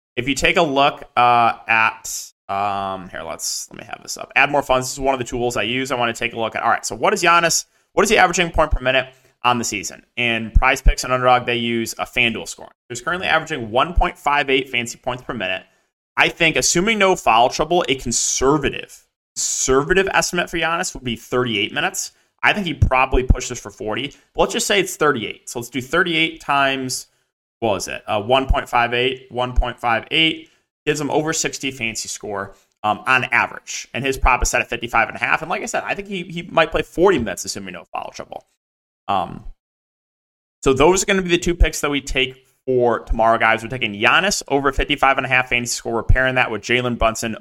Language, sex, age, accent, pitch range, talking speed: English, male, 30-49, American, 120-150 Hz, 225 wpm